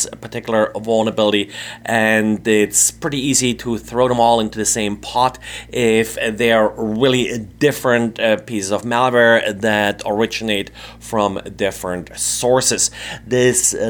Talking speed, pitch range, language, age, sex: 120 wpm, 110-130 Hz, English, 30-49, male